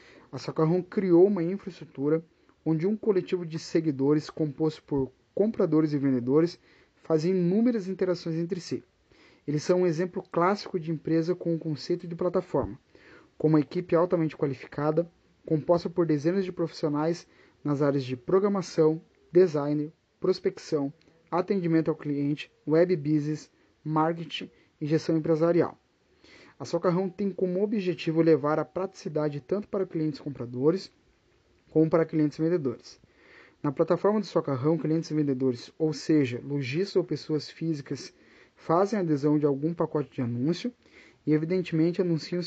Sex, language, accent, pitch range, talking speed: male, Portuguese, Brazilian, 150-180 Hz, 135 wpm